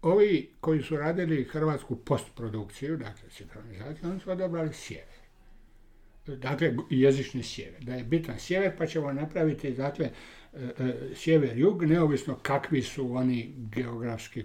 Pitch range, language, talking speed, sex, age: 125-160 Hz, Croatian, 125 wpm, male, 60-79